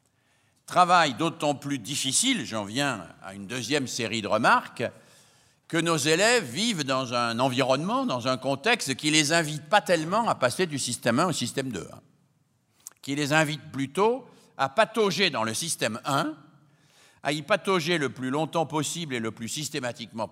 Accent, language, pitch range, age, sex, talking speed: French, French, 115-155 Hz, 60-79, male, 170 wpm